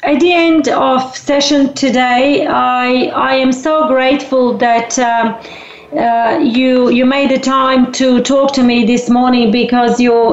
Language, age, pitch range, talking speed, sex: English, 40-59, 235-280 Hz, 155 wpm, female